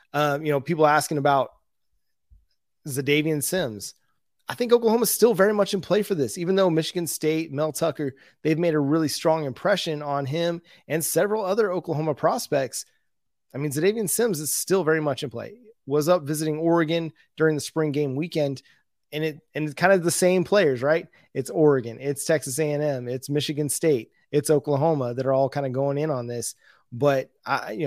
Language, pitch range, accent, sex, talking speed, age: English, 140-165 Hz, American, male, 190 wpm, 20-39